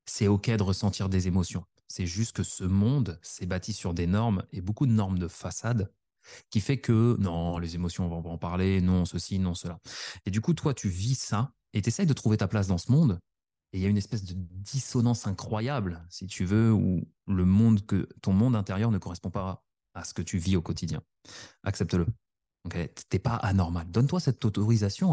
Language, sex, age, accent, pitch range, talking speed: French, male, 30-49, French, 95-125 Hz, 215 wpm